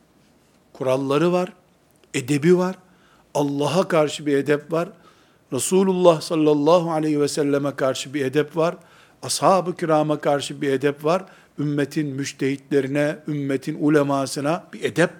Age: 60-79